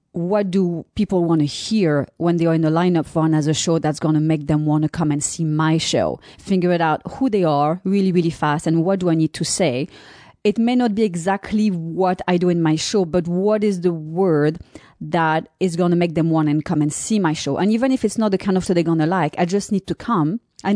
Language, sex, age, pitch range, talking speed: English, female, 30-49, 160-190 Hz, 265 wpm